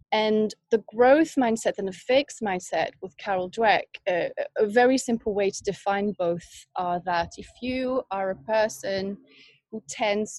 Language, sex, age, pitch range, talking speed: English, female, 30-49, 185-235 Hz, 160 wpm